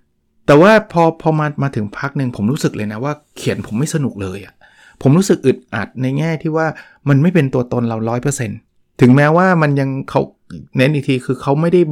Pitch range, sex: 125-155 Hz, male